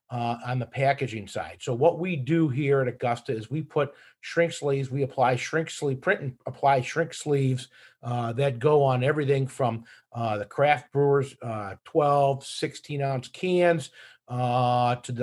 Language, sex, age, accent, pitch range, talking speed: English, male, 50-69, American, 125-150 Hz, 165 wpm